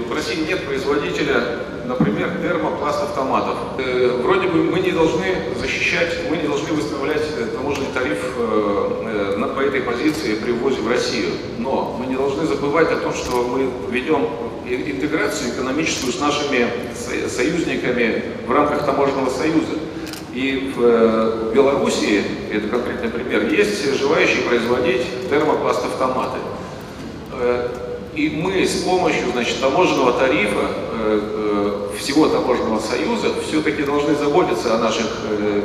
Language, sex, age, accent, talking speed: Russian, male, 40-59, native, 120 wpm